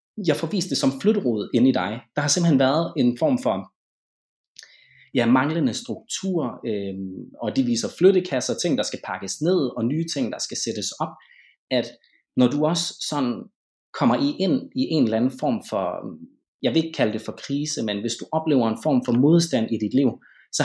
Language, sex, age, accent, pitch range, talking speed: Danish, male, 30-49, native, 110-155 Hz, 200 wpm